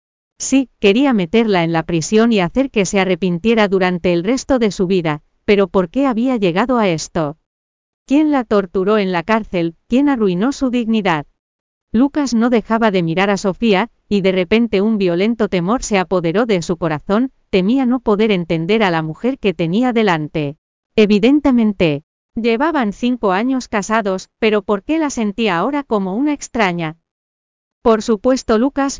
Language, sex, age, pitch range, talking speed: Spanish, female, 40-59, 185-240 Hz, 165 wpm